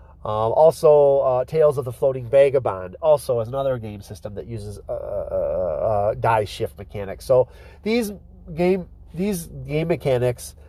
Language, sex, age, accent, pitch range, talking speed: English, male, 40-59, American, 110-150 Hz, 155 wpm